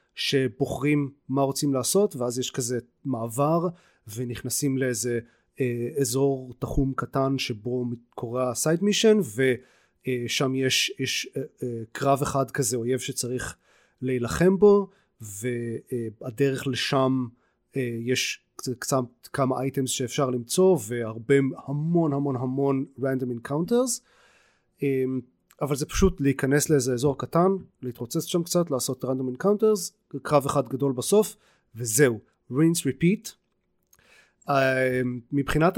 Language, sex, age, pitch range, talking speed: Hebrew, male, 30-49, 125-150 Hz, 115 wpm